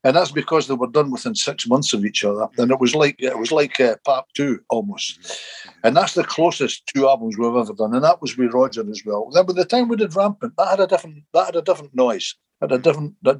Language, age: English, 60-79